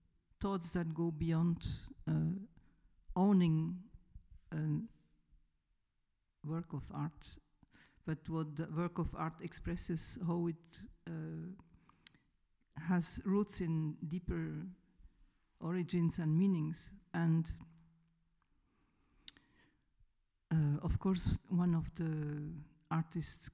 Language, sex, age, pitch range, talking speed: French, female, 50-69, 160-185 Hz, 90 wpm